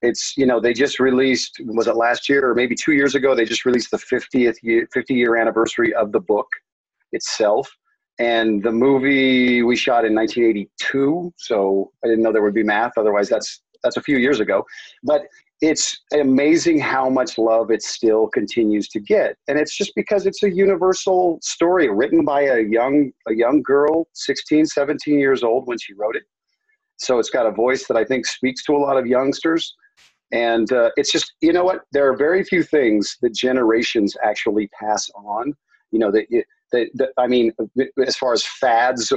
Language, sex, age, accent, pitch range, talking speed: English, male, 40-59, American, 115-165 Hz, 190 wpm